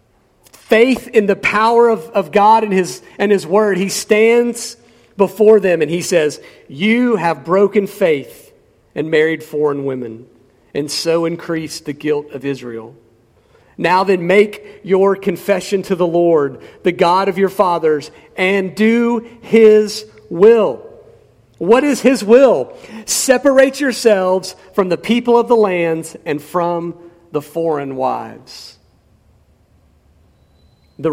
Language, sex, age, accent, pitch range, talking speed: English, male, 40-59, American, 145-210 Hz, 130 wpm